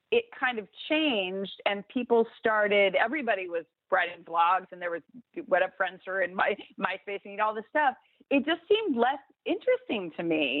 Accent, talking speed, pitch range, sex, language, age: American, 185 wpm, 170-245 Hz, female, English, 30-49